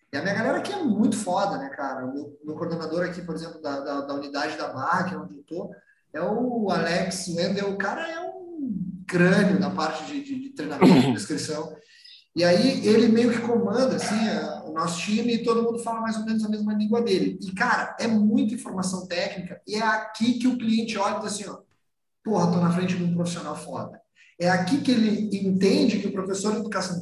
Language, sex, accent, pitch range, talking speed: Portuguese, male, Brazilian, 170-215 Hz, 220 wpm